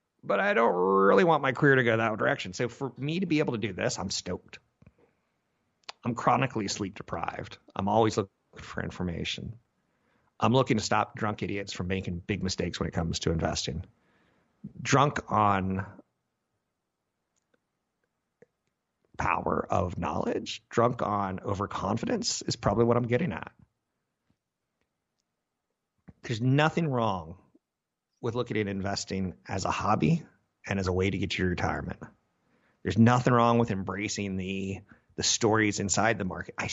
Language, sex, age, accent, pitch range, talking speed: English, male, 50-69, American, 95-115 Hz, 145 wpm